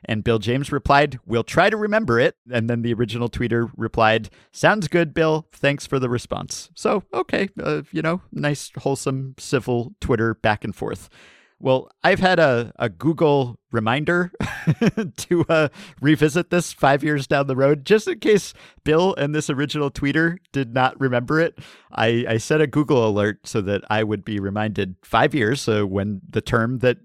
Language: English